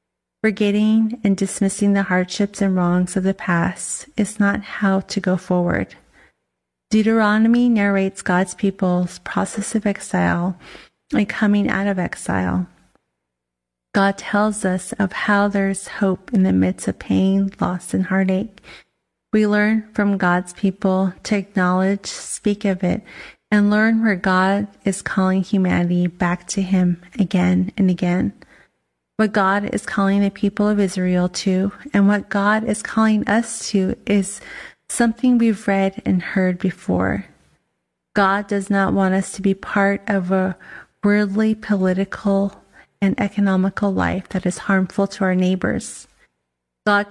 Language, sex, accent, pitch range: English, female, American, 185-205 Hz